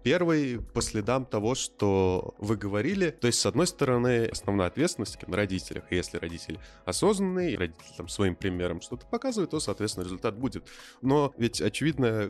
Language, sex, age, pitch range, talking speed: Russian, male, 20-39, 90-120 Hz, 150 wpm